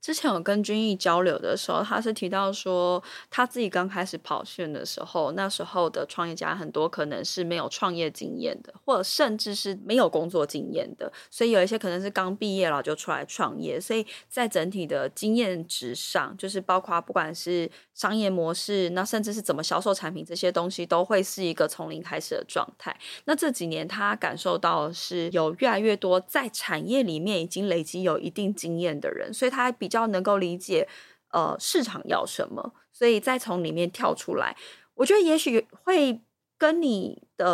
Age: 20-39